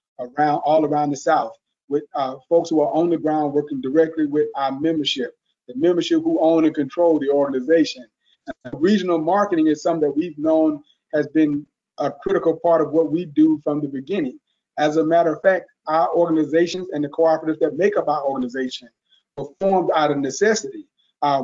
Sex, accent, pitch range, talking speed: male, American, 150-195 Hz, 190 wpm